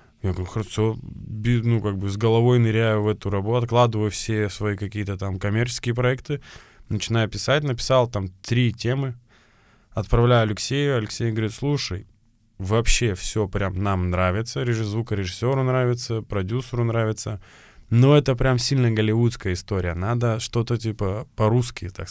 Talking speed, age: 140 wpm, 20-39